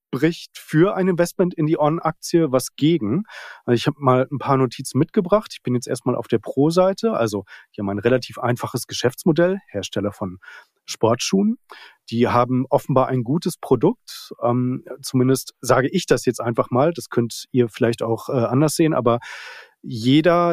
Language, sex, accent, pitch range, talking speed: German, male, German, 120-150 Hz, 160 wpm